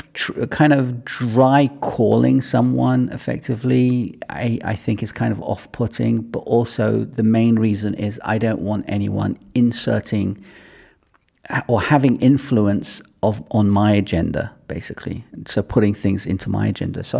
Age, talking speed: 40-59, 140 wpm